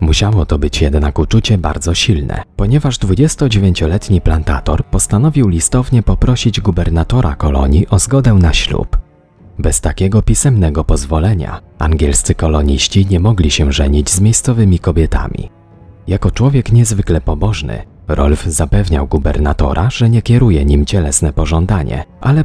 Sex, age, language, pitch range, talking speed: male, 30-49, Polish, 75-110 Hz, 125 wpm